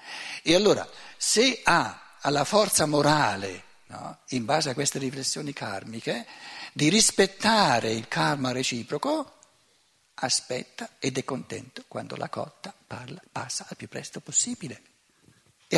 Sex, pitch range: male, 120-190 Hz